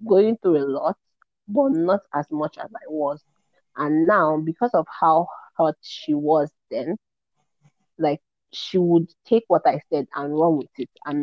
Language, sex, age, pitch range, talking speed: English, female, 30-49, 145-180 Hz, 170 wpm